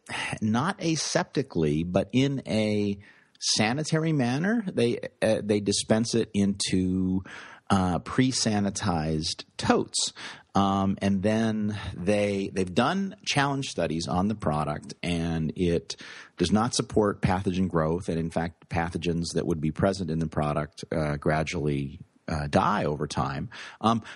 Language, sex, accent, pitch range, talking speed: English, male, American, 85-110 Hz, 130 wpm